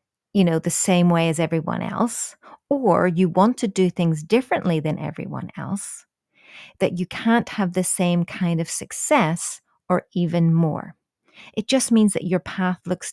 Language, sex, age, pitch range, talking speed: English, female, 30-49, 165-210 Hz, 170 wpm